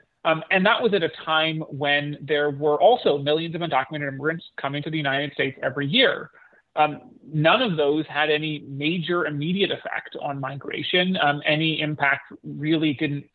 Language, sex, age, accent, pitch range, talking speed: English, male, 30-49, American, 145-170 Hz, 170 wpm